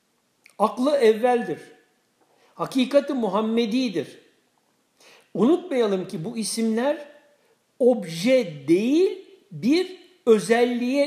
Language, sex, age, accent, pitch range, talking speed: Turkish, male, 60-79, native, 210-290 Hz, 65 wpm